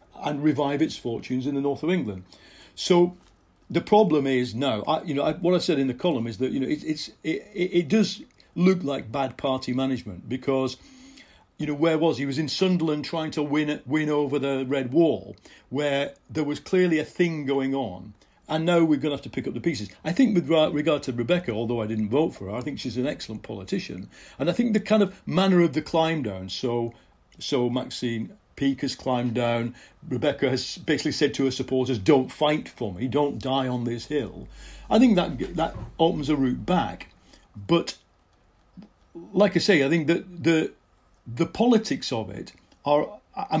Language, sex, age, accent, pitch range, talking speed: English, male, 50-69, British, 125-160 Hz, 205 wpm